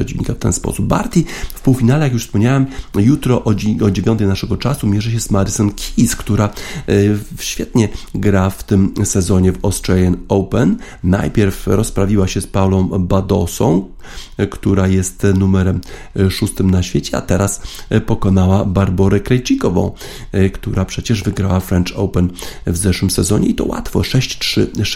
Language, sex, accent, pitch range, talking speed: Polish, male, native, 95-105 Hz, 135 wpm